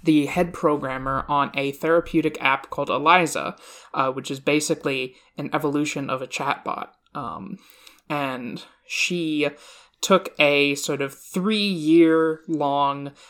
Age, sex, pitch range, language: 20-39, male, 135-160 Hz, English